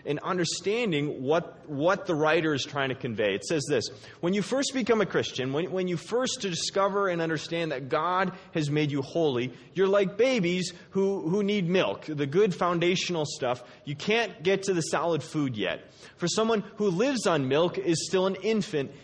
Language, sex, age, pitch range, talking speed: English, male, 30-49, 150-195 Hz, 190 wpm